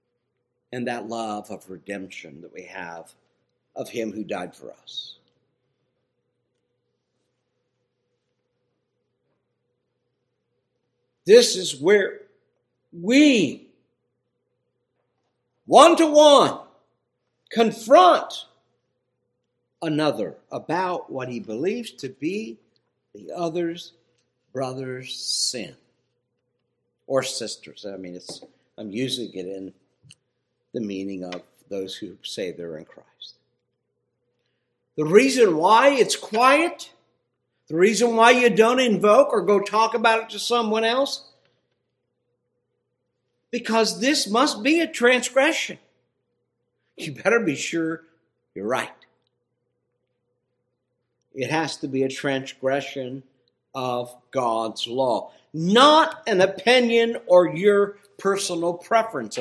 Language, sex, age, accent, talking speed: English, male, 60-79, American, 95 wpm